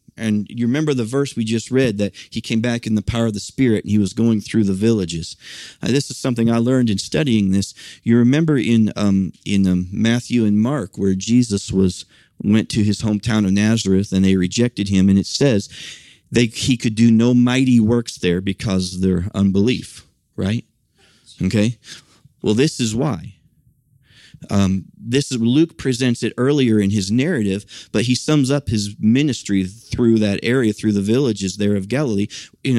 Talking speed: 190 wpm